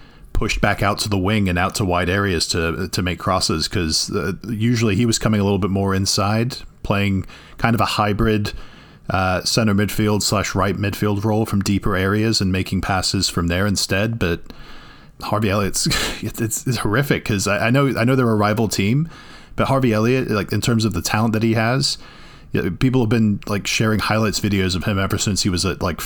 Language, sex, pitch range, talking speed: English, male, 95-110 Hz, 205 wpm